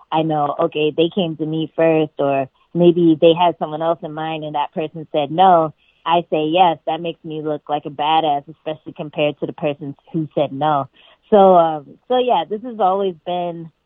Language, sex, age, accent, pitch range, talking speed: English, female, 20-39, American, 155-180 Hz, 205 wpm